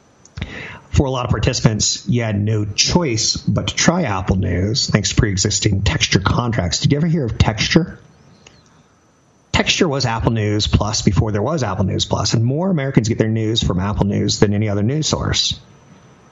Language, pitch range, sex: English, 100-135 Hz, male